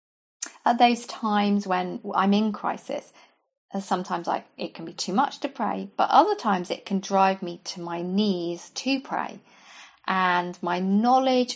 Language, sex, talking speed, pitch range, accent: English, female, 165 wpm, 180-225 Hz, British